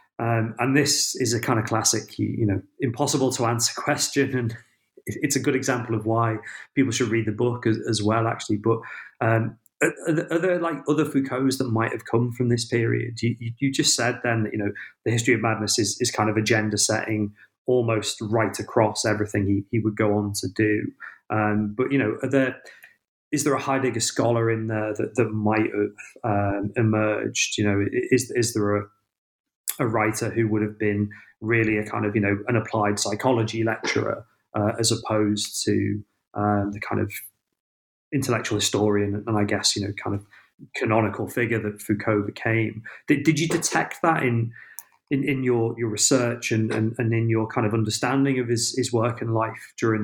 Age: 30-49